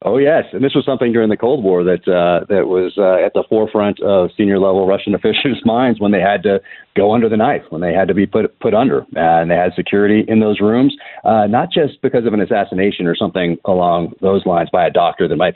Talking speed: 250 wpm